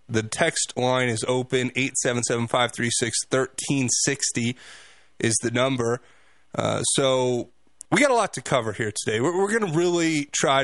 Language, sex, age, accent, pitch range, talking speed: English, male, 30-49, American, 120-135 Hz, 135 wpm